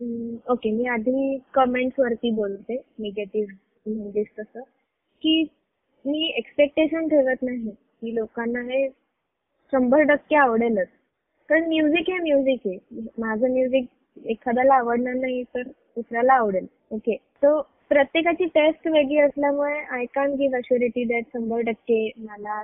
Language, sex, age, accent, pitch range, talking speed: Marathi, female, 20-39, native, 235-280 Hz, 120 wpm